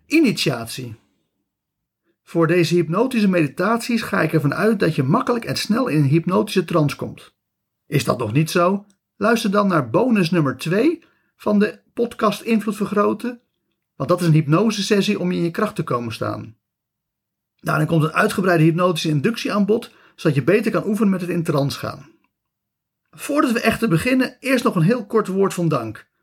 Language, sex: Dutch, male